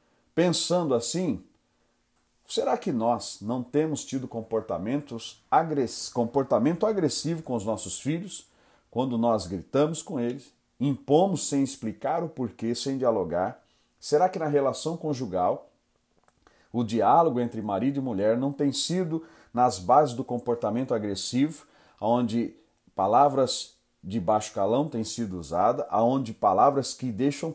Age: 40-59